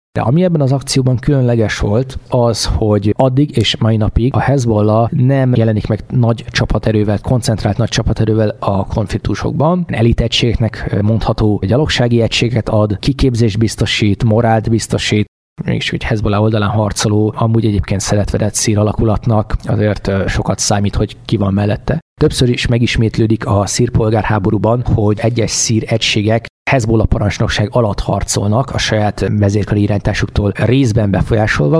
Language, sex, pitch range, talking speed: Hungarian, male, 105-120 Hz, 135 wpm